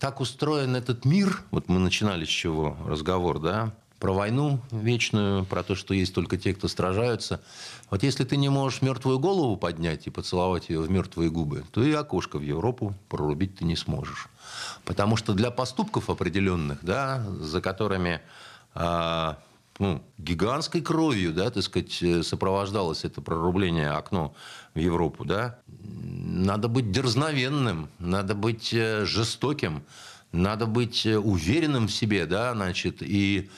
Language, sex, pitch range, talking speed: Russian, male, 90-125 Hz, 145 wpm